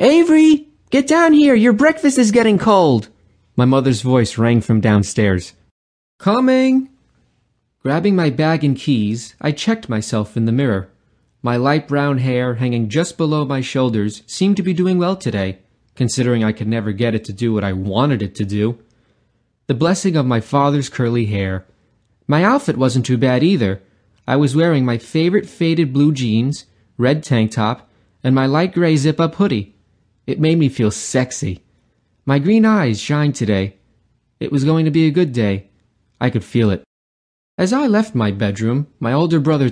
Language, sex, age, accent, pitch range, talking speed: English, male, 30-49, American, 110-150 Hz, 175 wpm